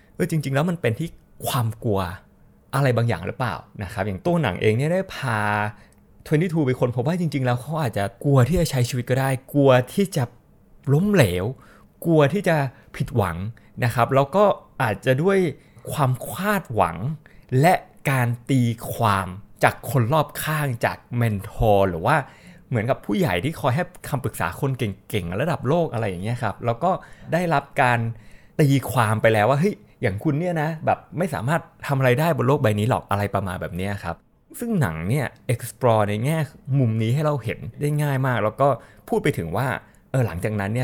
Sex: male